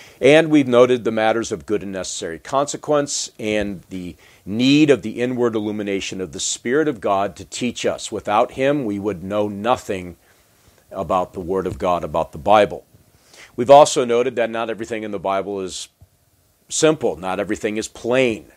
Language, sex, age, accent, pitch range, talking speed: English, male, 40-59, American, 100-120 Hz, 175 wpm